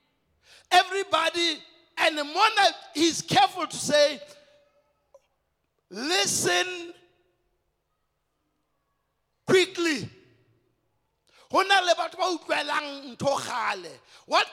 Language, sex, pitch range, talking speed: English, male, 260-345 Hz, 40 wpm